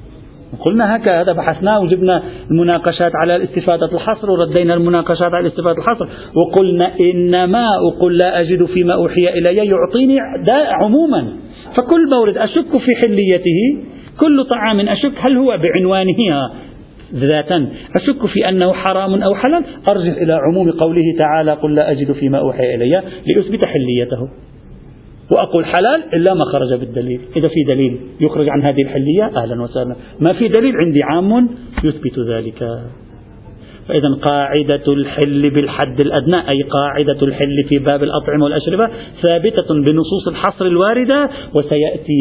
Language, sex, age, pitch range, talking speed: Arabic, male, 50-69, 145-190 Hz, 135 wpm